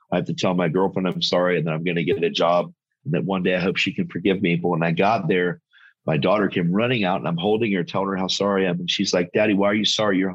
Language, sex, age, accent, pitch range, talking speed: English, male, 40-59, American, 85-105 Hz, 320 wpm